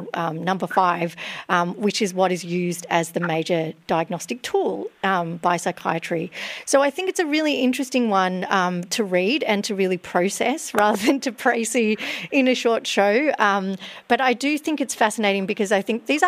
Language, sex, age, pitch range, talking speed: English, female, 40-59, 175-220 Hz, 185 wpm